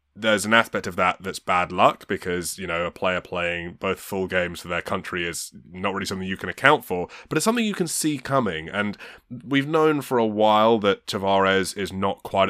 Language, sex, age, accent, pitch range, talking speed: English, male, 20-39, British, 95-120 Hz, 220 wpm